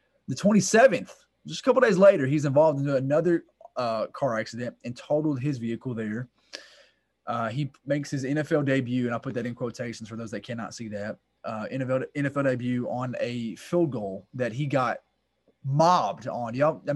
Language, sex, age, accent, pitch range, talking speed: English, male, 20-39, American, 115-140 Hz, 185 wpm